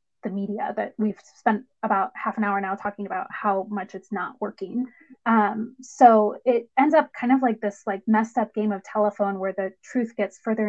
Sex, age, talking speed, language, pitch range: female, 20-39, 210 wpm, English, 210-250 Hz